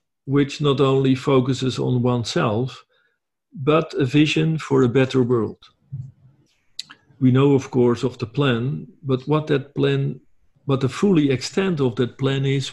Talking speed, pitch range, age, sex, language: 150 wpm, 125-145 Hz, 50-69, male, English